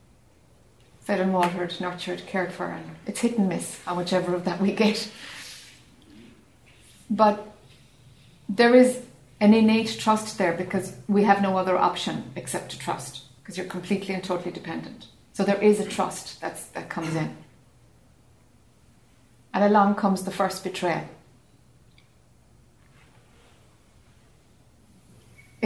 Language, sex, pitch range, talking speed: English, female, 165-200 Hz, 125 wpm